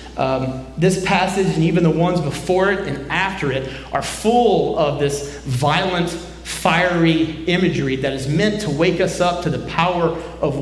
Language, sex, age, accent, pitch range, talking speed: English, male, 30-49, American, 150-200 Hz, 170 wpm